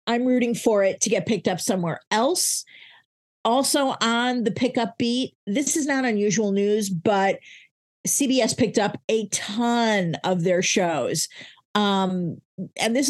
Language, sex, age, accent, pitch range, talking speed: English, female, 50-69, American, 200-235 Hz, 145 wpm